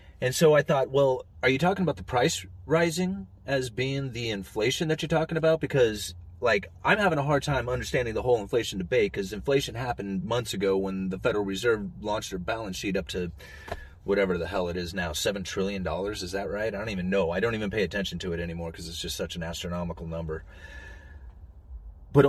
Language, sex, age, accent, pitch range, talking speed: English, male, 30-49, American, 80-115 Hz, 210 wpm